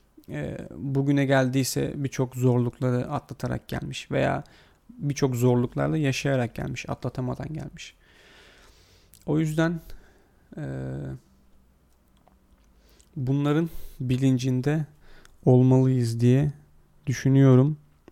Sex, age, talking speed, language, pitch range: male, 40-59, 65 wpm, Turkish, 120-140 Hz